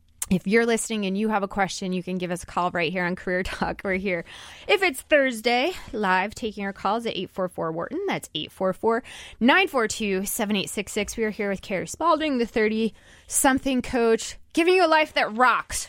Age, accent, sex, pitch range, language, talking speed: 20-39, American, female, 185-255 Hz, English, 195 wpm